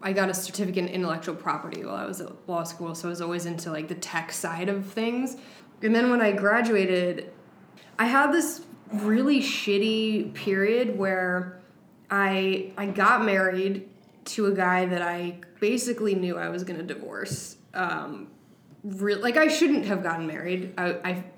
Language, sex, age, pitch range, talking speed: English, female, 20-39, 180-210 Hz, 170 wpm